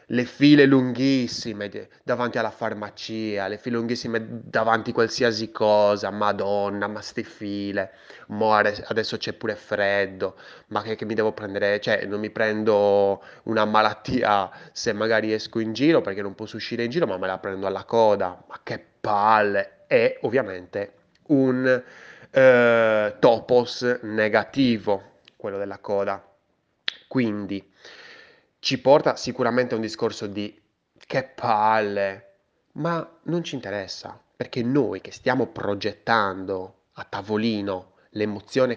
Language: Italian